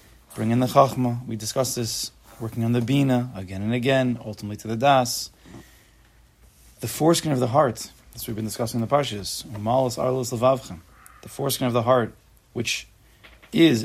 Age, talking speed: 30-49, 160 wpm